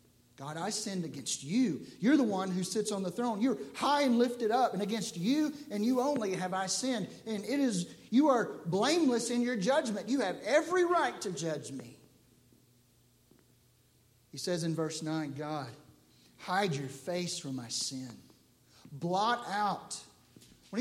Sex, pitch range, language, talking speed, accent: male, 165-245 Hz, English, 165 wpm, American